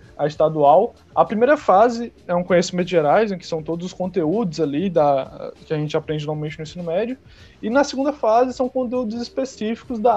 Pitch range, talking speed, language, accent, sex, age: 165-225 Hz, 190 wpm, Portuguese, Brazilian, male, 20-39